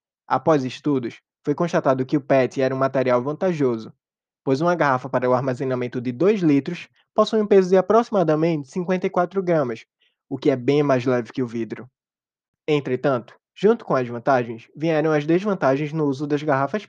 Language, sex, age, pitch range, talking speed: Portuguese, male, 20-39, 130-170 Hz, 170 wpm